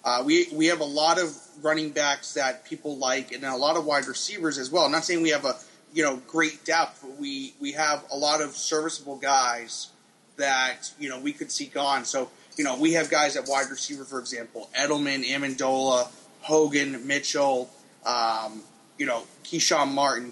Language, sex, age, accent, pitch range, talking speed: English, male, 30-49, American, 130-165 Hz, 195 wpm